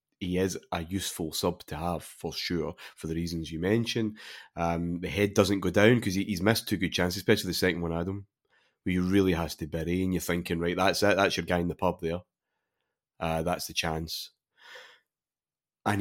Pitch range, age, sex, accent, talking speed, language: 85-100 Hz, 30-49, male, British, 210 wpm, English